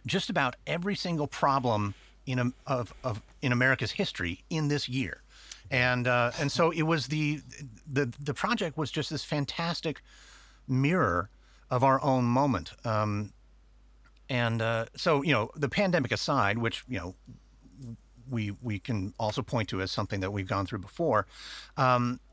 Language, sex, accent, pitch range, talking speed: English, male, American, 115-150 Hz, 160 wpm